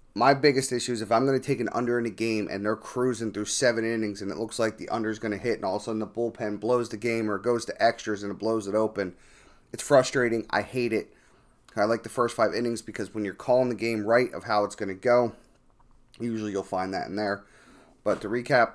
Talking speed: 260 wpm